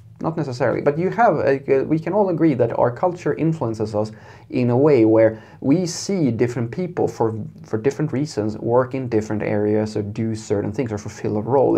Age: 30-49